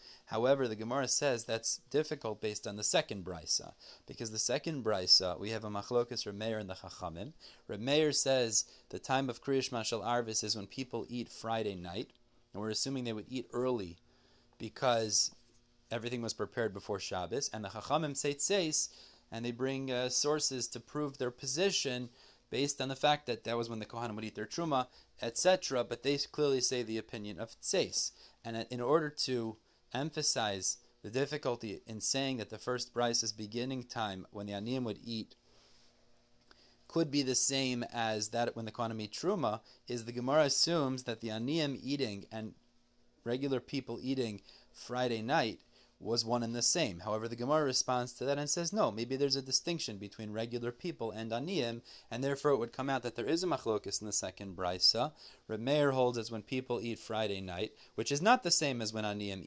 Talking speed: 185 wpm